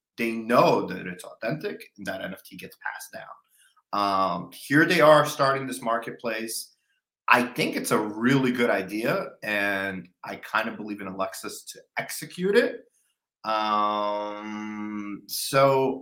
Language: English